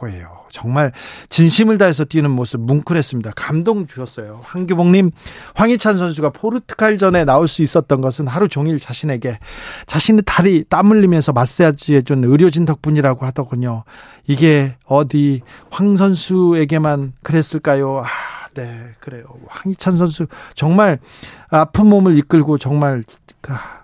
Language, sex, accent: Korean, male, native